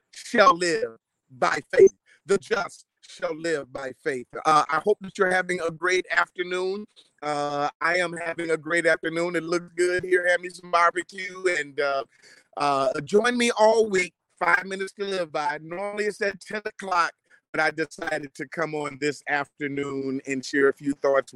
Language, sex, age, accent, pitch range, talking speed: English, male, 30-49, American, 145-195 Hz, 180 wpm